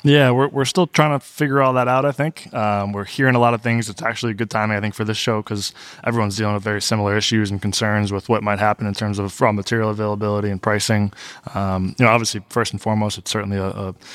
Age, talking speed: 20-39, 260 wpm